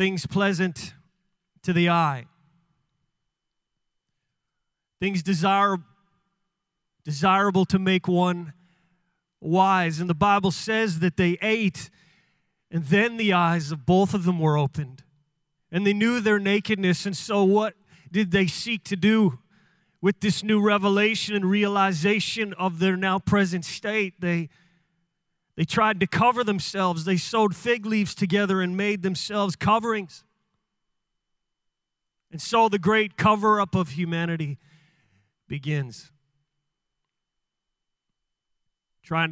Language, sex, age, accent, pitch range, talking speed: English, male, 30-49, American, 165-200 Hz, 115 wpm